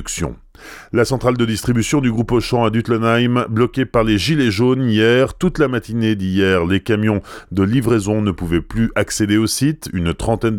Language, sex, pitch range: French, male, 90-115 Hz